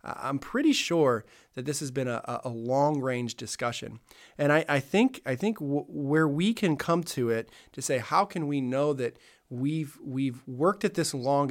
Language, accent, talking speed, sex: English, American, 200 wpm, male